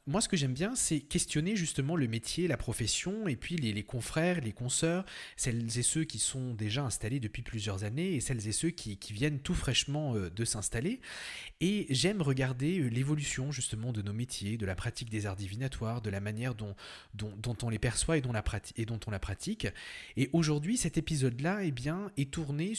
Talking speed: 195 wpm